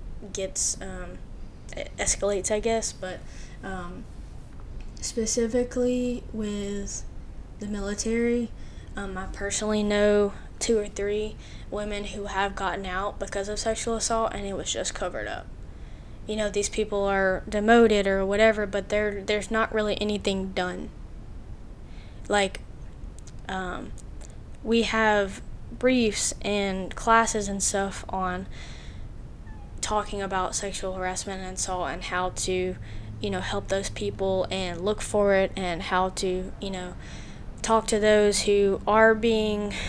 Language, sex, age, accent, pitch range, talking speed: English, female, 10-29, American, 185-215 Hz, 130 wpm